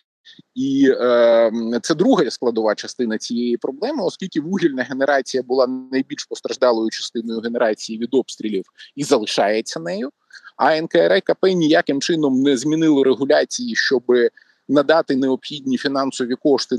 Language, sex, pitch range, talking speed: Ukrainian, male, 130-200 Hz, 120 wpm